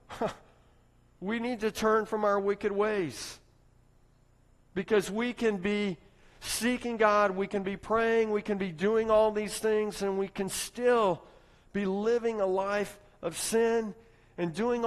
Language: English